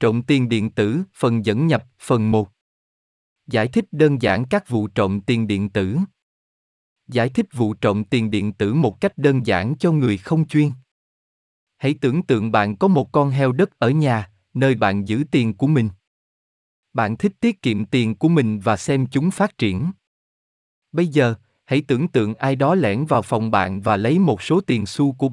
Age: 20-39